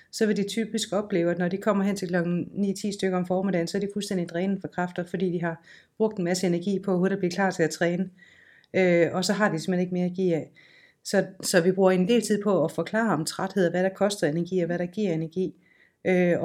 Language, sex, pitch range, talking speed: Danish, female, 175-200 Hz, 260 wpm